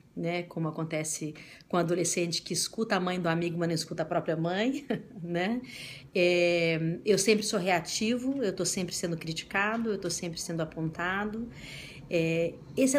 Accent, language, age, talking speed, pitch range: Brazilian, Portuguese, 40-59, 165 wpm, 165-210 Hz